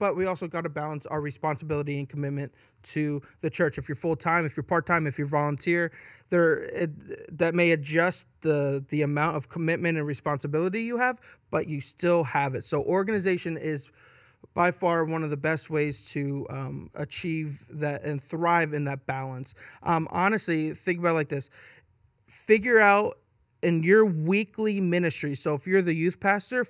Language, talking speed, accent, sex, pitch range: English, 180 wpm, American, male, 150-180 Hz